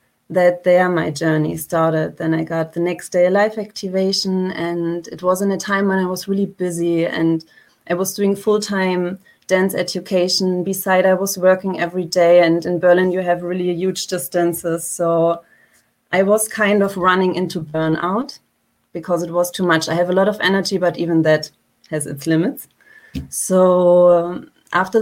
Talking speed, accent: 175 wpm, German